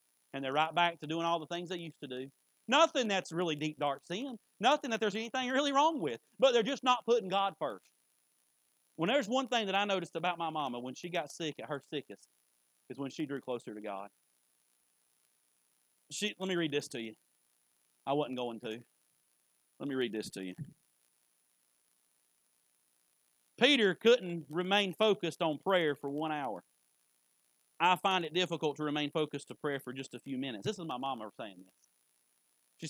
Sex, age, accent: male, 40-59, American